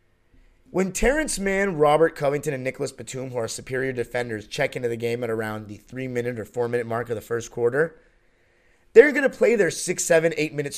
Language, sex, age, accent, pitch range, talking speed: English, male, 30-49, American, 130-180 Hz, 195 wpm